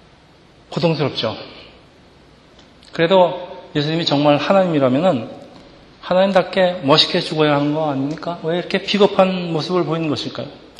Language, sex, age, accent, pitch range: Korean, male, 40-59, native, 145-190 Hz